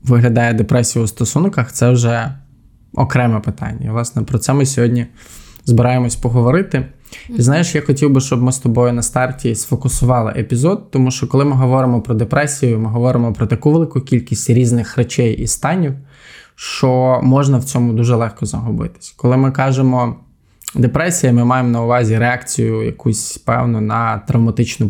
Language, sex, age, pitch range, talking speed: Ukrainian, male, 20-39, 115-130 Hz, 160 wpm